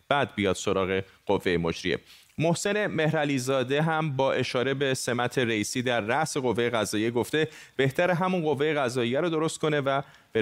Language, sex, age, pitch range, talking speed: Persian, male, 30-49, 110-135 Hz, 150 wpm